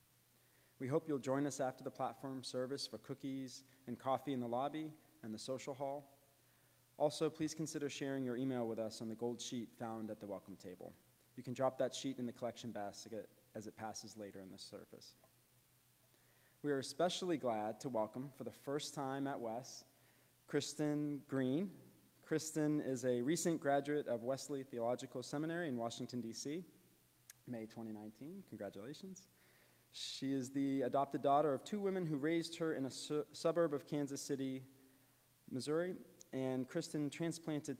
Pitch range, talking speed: 120-145 Hz, 165 wpm